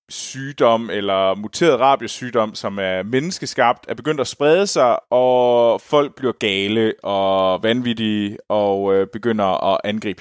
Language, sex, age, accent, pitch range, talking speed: Danish, male, 20-39, native, 105-145 Hz, 135 wpm